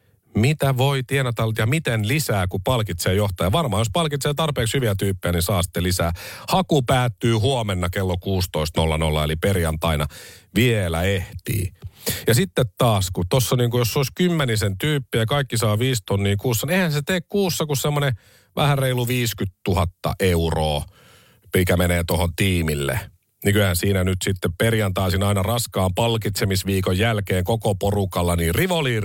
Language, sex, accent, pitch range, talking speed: Finnish, male, native, 90-125 Hz, 150 wpm